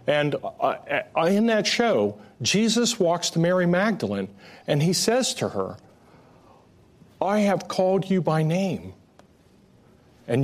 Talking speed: 120 wpm